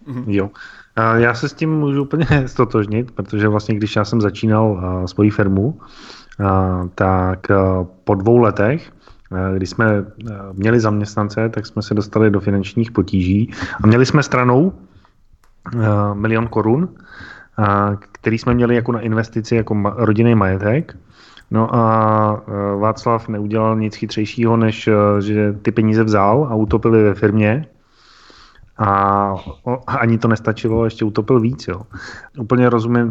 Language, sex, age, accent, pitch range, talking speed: Czech, male, 30-49, native, 105-115 Hz, 130 wpm